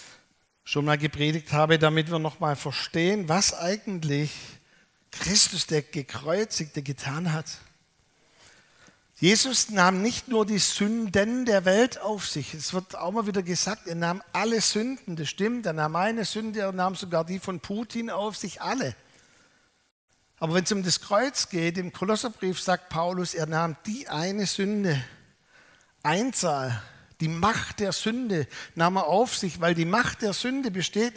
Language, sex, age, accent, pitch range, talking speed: German, male, 60-79, German, 155-210 Hz, 160 wpm